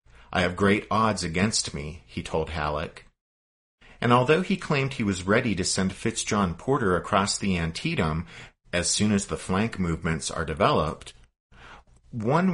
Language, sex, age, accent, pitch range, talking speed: English, male, 50-69, American, 80-115 Hz, 155 wpm